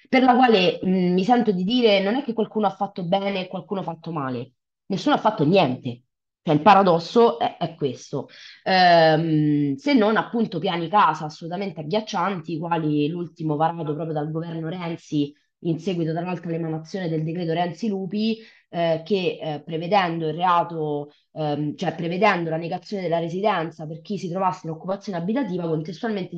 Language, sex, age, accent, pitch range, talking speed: Italian, female, 20-39, native, 160-210 Hz, 170 wpm